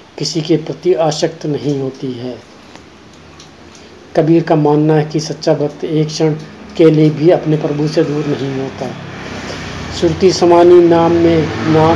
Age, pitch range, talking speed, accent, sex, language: 40-59, 150-165 Hz, 135 wpm, native, male, Hindi